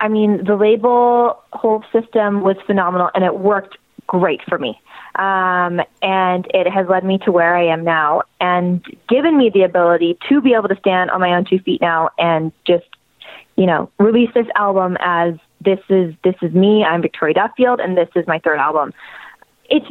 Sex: female